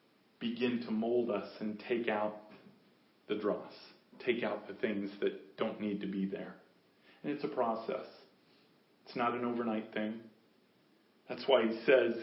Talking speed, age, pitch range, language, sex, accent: 155 wpm, 40-59, 115-150 Hz, English, male, American